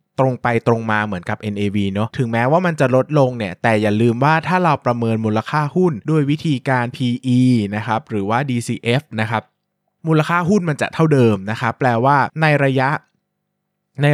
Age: 20-39